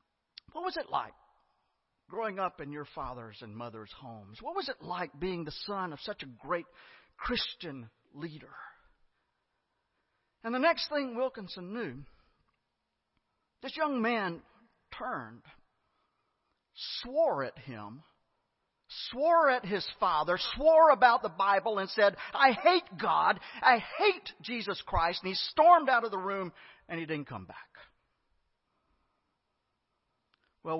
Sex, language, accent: male, English, American